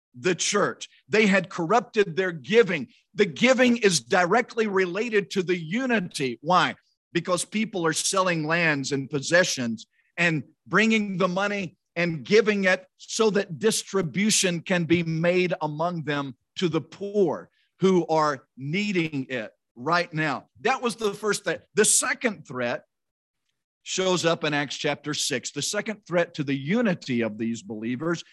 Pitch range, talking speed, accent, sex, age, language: 150-210 Hz, 150 wpm, American, male, 50-69, English